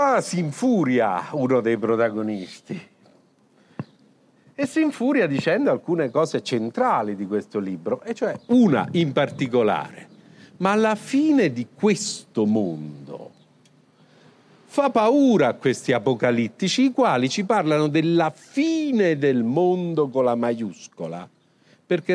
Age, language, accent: 50-69, Italian, native